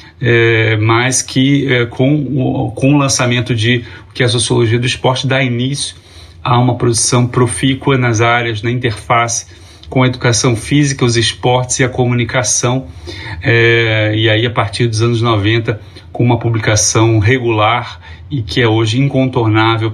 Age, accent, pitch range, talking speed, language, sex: 30-49, Brazilian, 110-125 Hz, 155 wpm, Portuguese, male